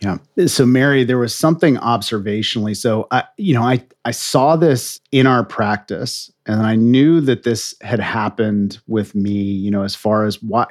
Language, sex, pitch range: English, male, 105-125 Hz